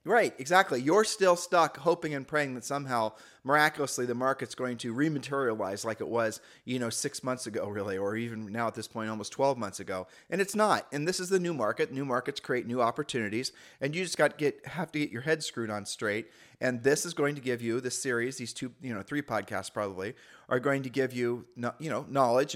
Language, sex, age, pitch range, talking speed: English, male, 30-49, 120-150 Hz, 230 wpm